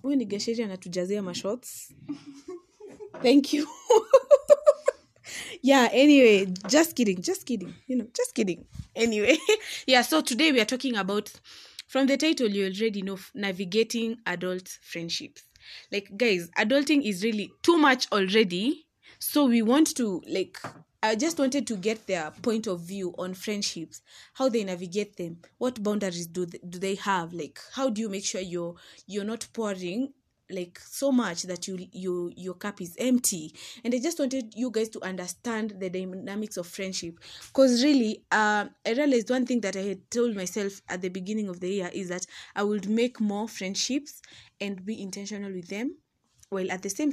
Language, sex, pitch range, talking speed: English, female, 190-260 Hz, 165 wpm